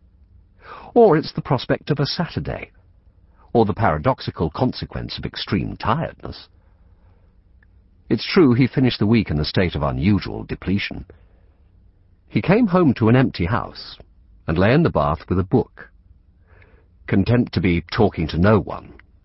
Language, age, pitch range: English, 50-69, 85-110 Hz